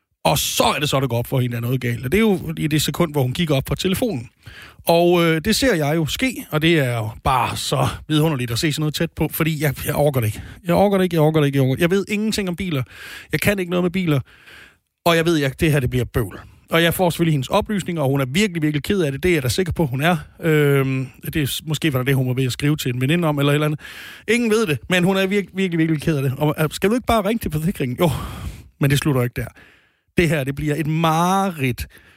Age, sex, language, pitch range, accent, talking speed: 30-49, male, Danish, 130-170 Hz, native, 300 wpm